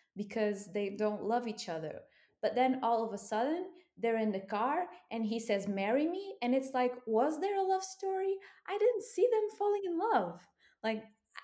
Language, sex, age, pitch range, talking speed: English, female, 20-39, 180-245 Hz, 195 wpm